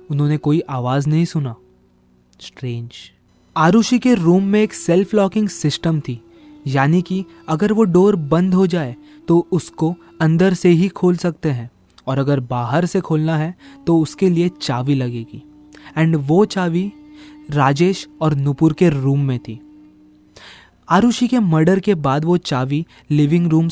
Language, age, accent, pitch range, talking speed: Hindi, 20-39, native, 135-180 Hz, 155 wpm